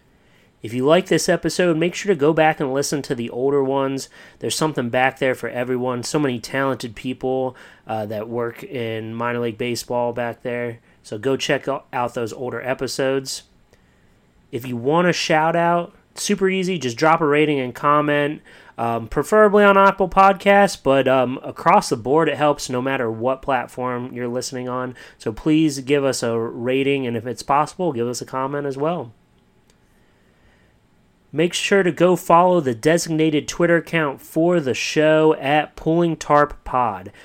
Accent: American